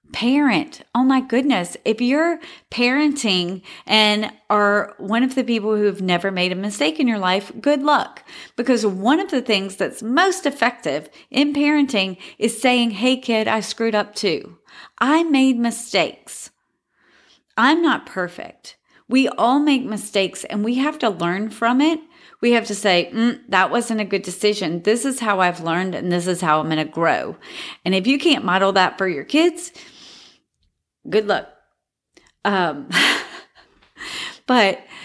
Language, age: English, 30-49